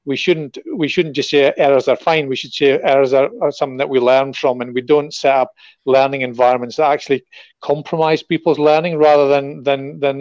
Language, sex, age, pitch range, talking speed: English, male, 40-59, 135-150 Hz, 210 wpm